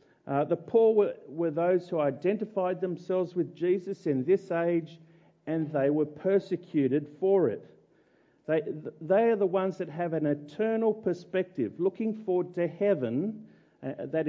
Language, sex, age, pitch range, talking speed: English, male, 50-69, 140-185 Hz, 150 wpm